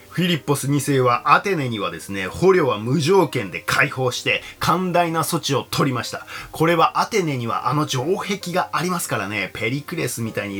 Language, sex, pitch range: Japanese, male, 120-170 Hz